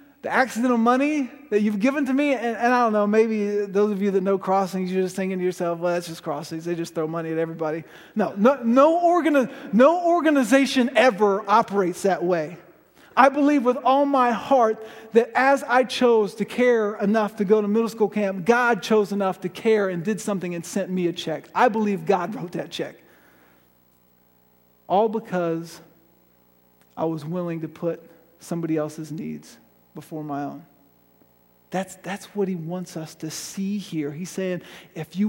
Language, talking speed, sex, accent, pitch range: English, 185 wpm, male, American, 155-210 Hz